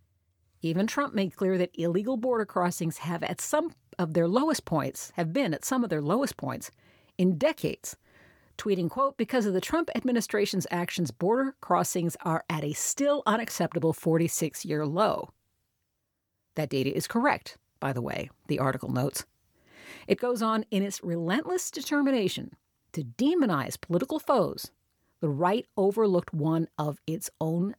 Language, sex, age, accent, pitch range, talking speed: English, female, 50-69, American, 150-215 Hz, 150 wpm